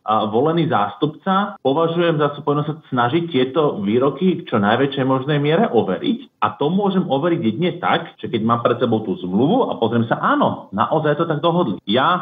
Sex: male